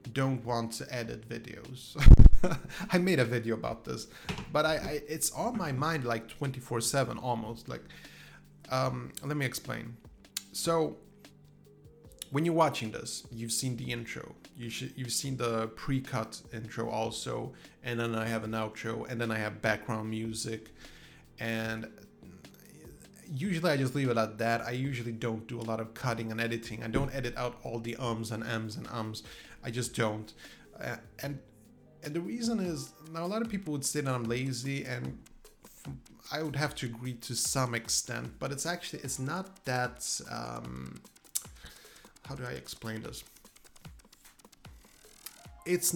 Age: 30-49